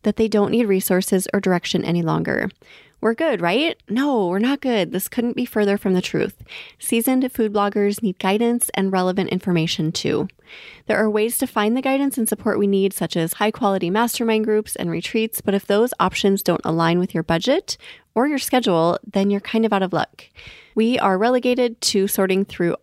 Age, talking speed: 30-49, 195 wpm